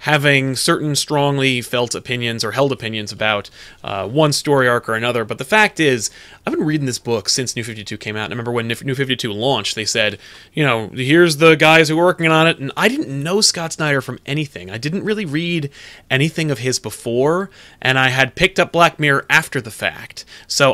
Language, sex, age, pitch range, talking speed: English, male, 30-49, 120-160 Hz, 215 wpm